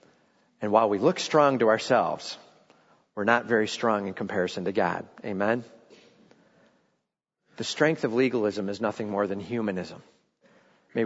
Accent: American